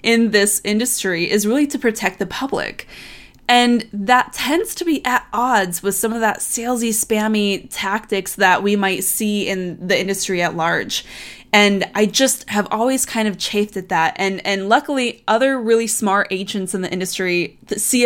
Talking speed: 175 wpm